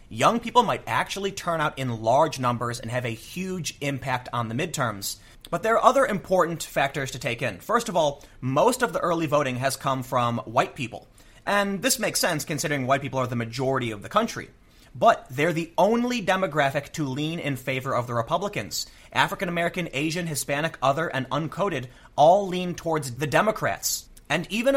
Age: 30-49